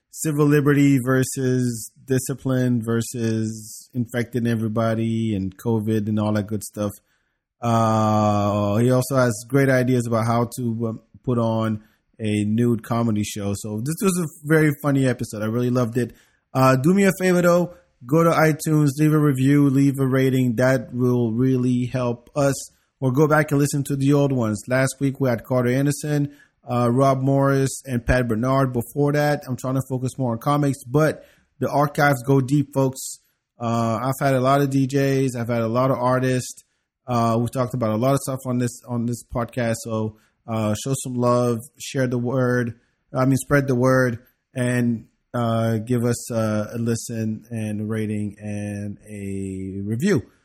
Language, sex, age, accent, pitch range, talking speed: English, male, 30-49, American, 115-140 Hz, 175 wpm